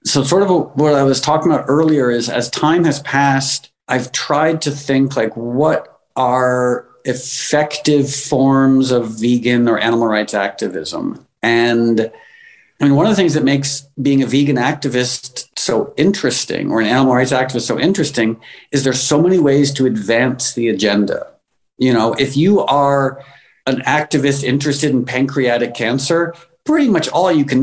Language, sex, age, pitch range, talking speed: English, male, 50-69, 120-145 Hz, 165 wpm